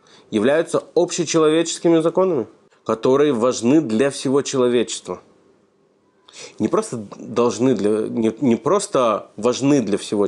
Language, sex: Russian, male